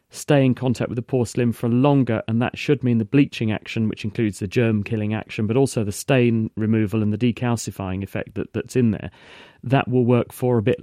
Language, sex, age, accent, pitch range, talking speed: English, male, 40-59, British, 110-130 Hz, 220 wpm